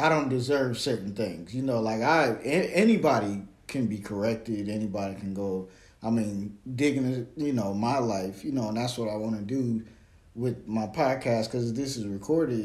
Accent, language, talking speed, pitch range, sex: American, English, 190 wpm, 110-135 Hz, male